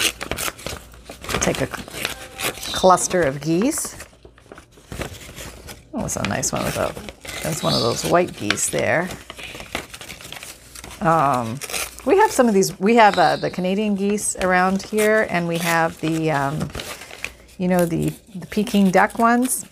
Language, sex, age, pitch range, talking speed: English, female, 40-59, 170-215 Hz, 135 wpm